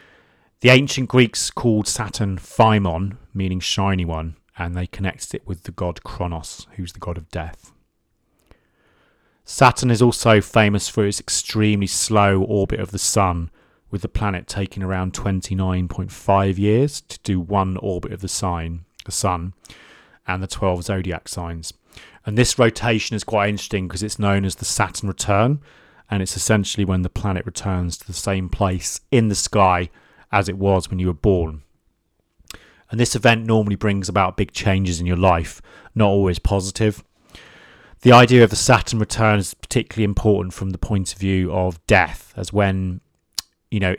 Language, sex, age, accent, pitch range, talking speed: English, male, 30-49, British, 90-105 Hz, 170 wpm